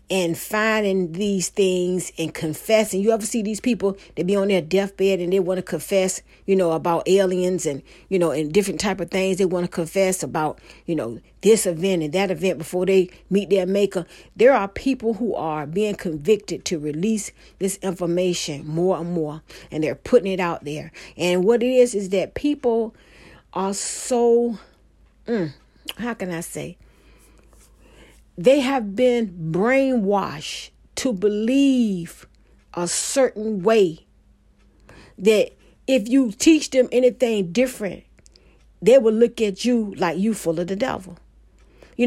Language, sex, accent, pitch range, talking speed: English, female, American, 175-230 Hz, 160 wpm